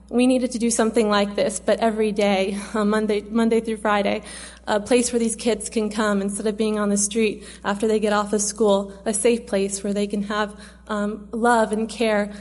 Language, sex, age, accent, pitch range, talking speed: English, female, 20-39, American, 205-225 Hz, 220 wpm